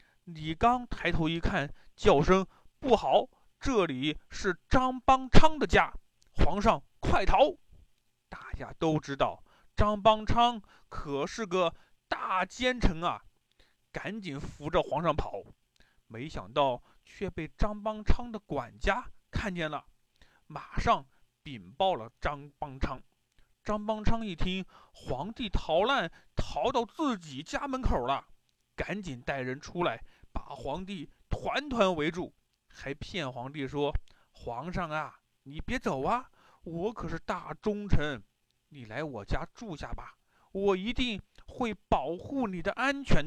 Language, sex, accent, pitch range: Chinese, male, native, 145-215 Hz